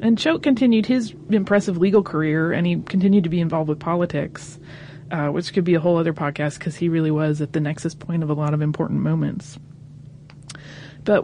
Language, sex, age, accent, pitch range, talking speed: English, female, 30-49, American, 150-190 Hz, 205 wpm